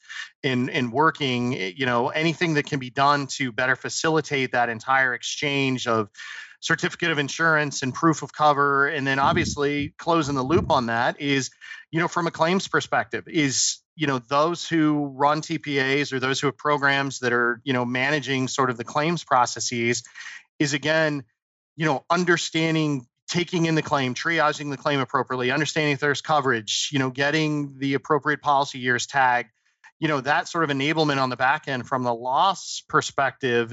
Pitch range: 130-155 Hz